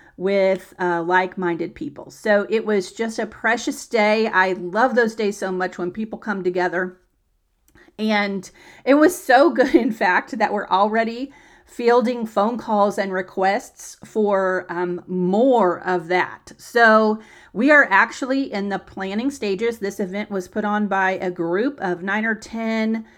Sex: female